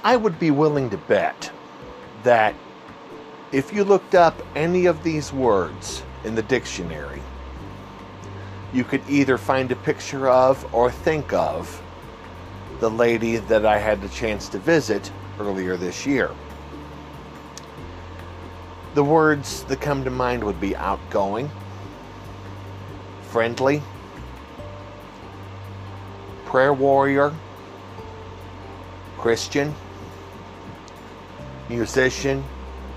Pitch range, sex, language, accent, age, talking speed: 90-135 Hz, male, English, American, 50-69, 100 wpm